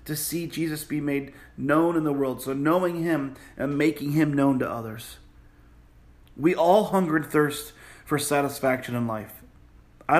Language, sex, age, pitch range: English, male, 30-49, 125-150 Hz